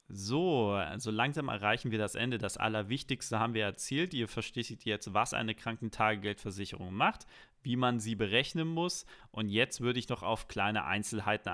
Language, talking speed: German, 165 wpm